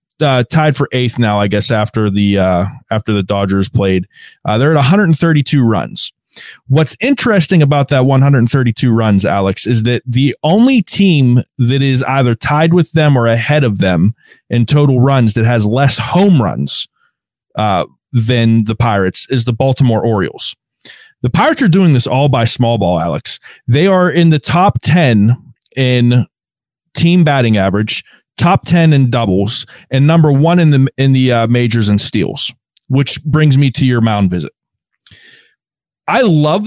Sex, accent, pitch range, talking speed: male, American, 115-155 Hz, 165 wpm